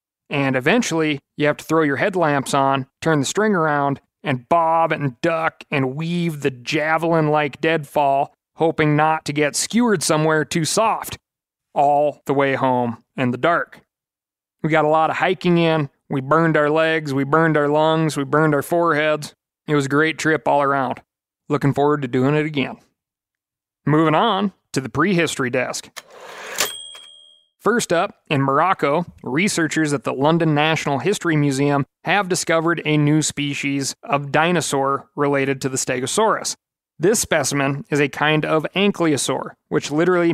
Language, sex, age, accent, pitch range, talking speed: English, male, 30-49, American, 140-160 Hz, 160 wpm